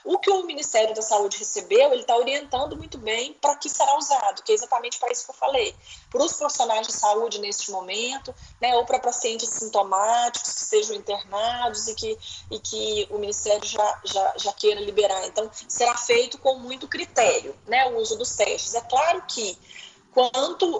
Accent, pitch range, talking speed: Brazilian, 215-300 Hz, 190 wpm